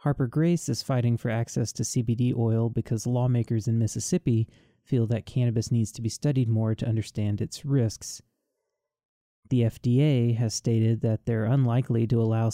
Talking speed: 165 wpm